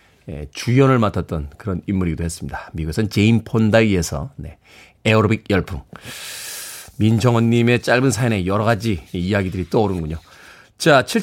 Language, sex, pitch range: Korean, male, 110-170 Hz